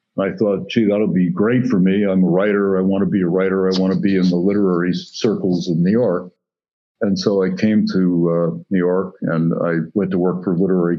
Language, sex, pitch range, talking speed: English, male, 90-100 Hz, 240 wpm